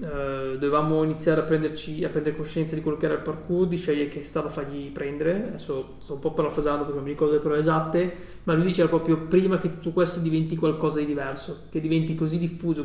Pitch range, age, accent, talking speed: 145-170 Hz, 20-39, native, 230 wpm